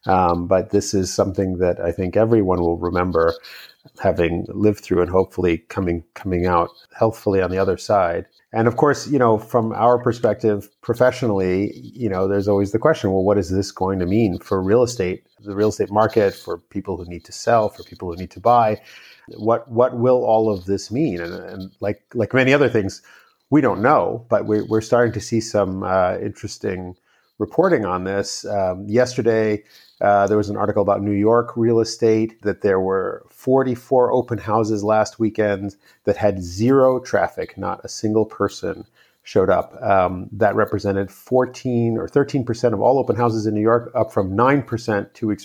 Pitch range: 95-115 Hz